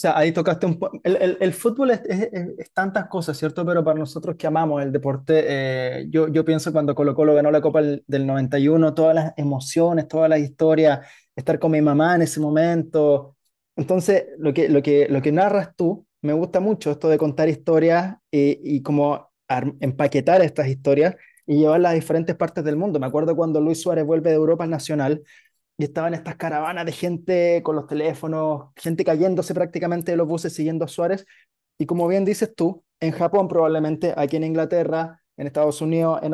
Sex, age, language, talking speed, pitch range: male, 20-39, Spanish, 200 wpm, 150-175 Hz